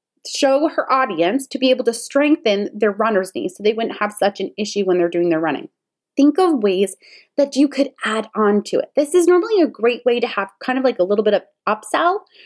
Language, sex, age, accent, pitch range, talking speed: English, female, 20-39, American, 200-275 Hz, 235 wpm